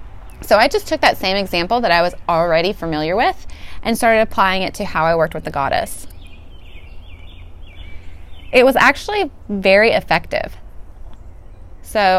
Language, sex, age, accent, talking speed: English, female, 20-39, American, 150 wpm